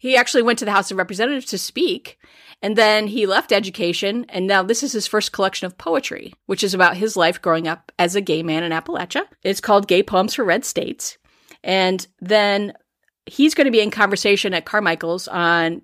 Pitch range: 170-220 Hz